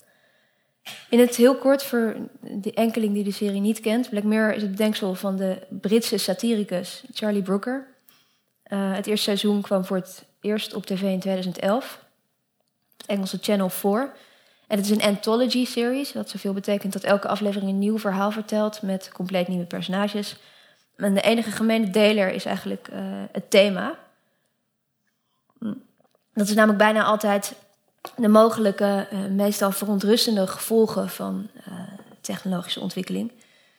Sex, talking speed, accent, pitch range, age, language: female, 145 wpm, Dutch, 190-220 Hz, 20-39, Dutch